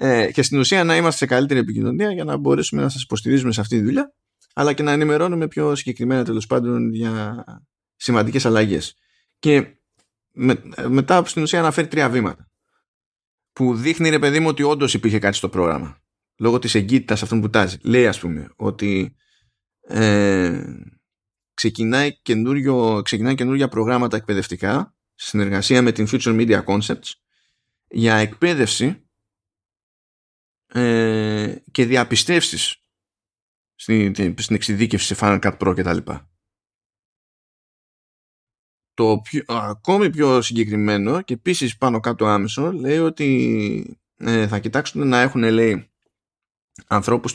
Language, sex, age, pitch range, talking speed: Greek, male, 20-39, 105-130 Hz, 125 wpm